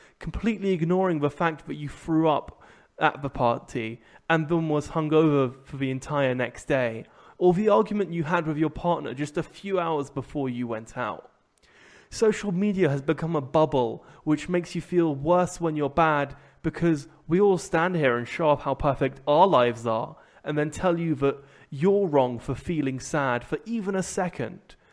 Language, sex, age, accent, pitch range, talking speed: English, male, 20-39, British, 135-175 Hz, 185 wpm